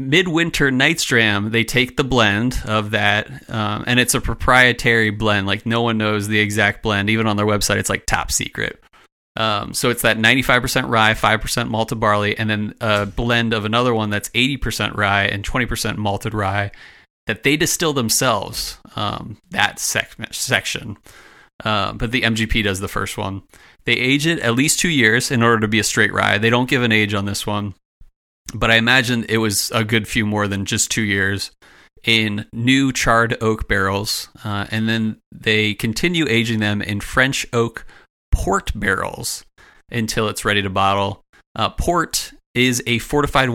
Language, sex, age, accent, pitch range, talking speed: English, male, 30-49, American, 105-125 Hz, 185 wpm